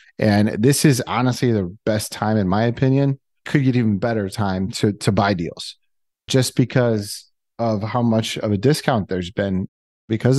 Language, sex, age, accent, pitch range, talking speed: English, male, 30-49, American, 100-125 Hz, 175 wpm